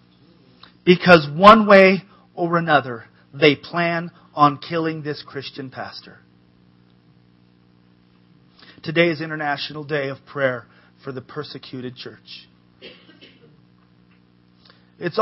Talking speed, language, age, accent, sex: 90 wpm, English, 40-59, American, male